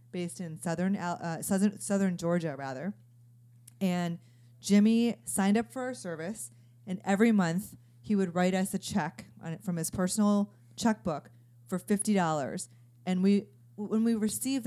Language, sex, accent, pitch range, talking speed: English, female, American, 150-190 Hz, 150 wpm